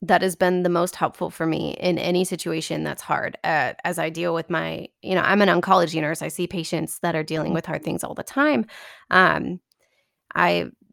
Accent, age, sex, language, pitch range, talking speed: American, 20-39, female, English, 175-210 Hz, 215 wpm